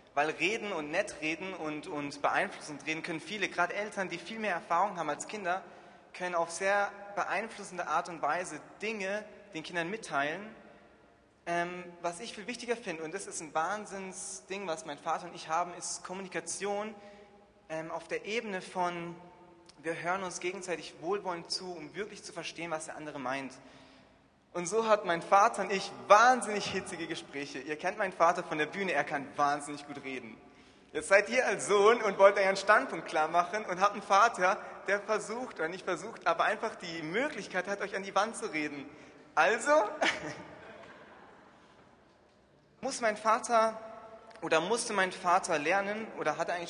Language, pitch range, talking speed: German, 160-205 Hz, 175 wpm